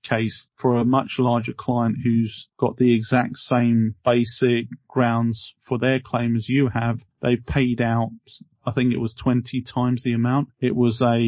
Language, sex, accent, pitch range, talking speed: English, male, British, 115-130 Hz, 175 wpm